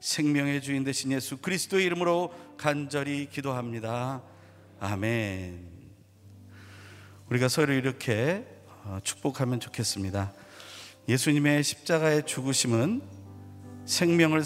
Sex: male